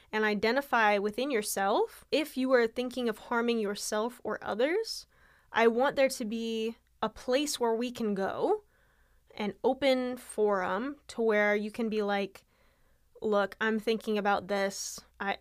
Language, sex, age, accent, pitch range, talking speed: English, female, 10-29, American, 200-250 Hz, 150 wpm